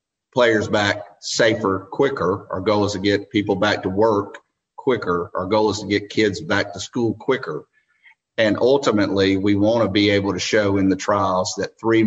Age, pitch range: 50-69, 95-105 Hz